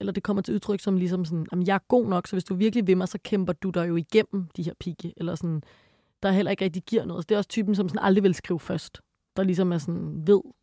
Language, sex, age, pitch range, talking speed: Danish, female, 20-39, 180-210 Hz, 300 wpm